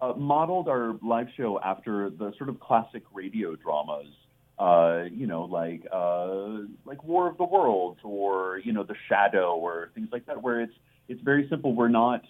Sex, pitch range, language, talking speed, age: male, 90-125 Hz, English, 185 wpm, 30-49